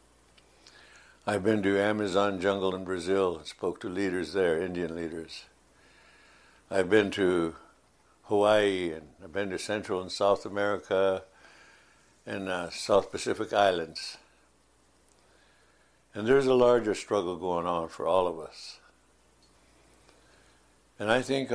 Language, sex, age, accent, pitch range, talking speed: Dutch, male, 60-79, American, 85-100 Hz, 125 wpm